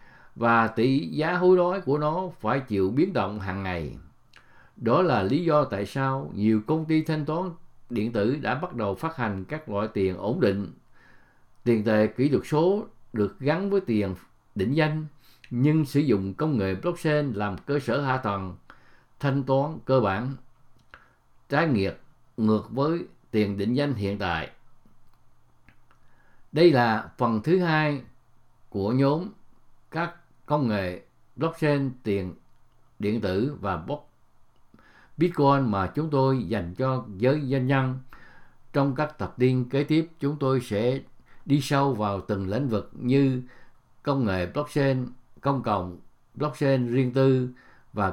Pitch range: 110-145 Hz